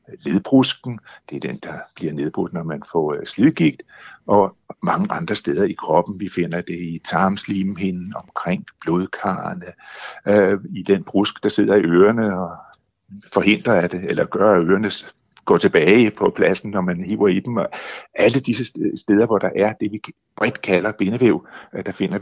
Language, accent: Danish, native